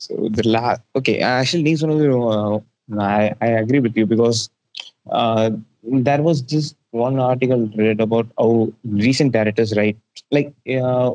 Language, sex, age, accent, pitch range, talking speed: Tamil, male, 20-39, native, 110-140 Hz, 150 wpm